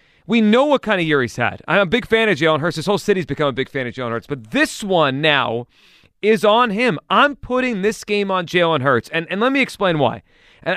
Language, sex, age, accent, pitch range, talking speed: English, male, 30-49, American, 155-210 Hz, 255 wpm